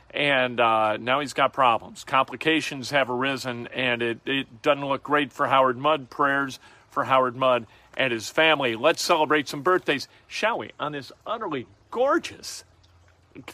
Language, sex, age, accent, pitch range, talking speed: English, male, 40-59, American, 135-185 Hz, 160 wpm